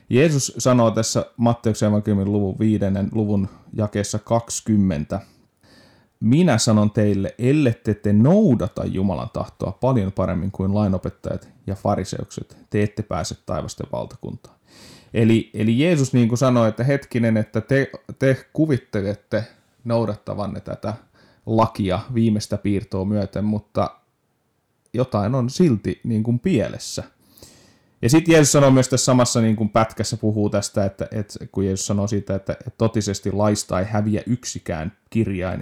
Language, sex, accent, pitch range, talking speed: Finnish, male, native, 100-115 Hz, 130 wpm